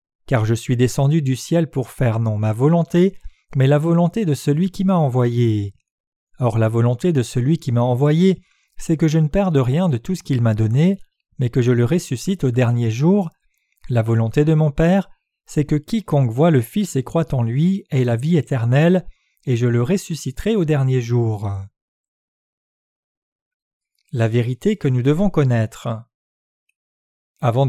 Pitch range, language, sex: 120-165 Hz, French, male